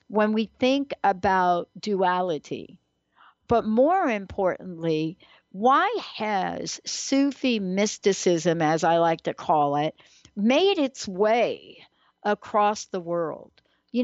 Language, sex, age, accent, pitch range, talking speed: English, female, 60-79, American, 200-275 Hz, 105 wpm